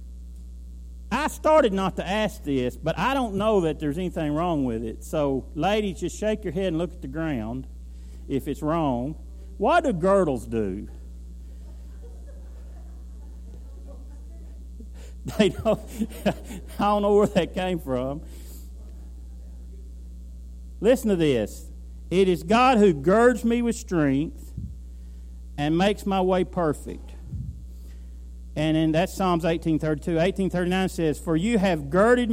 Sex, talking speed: male, 125 wpm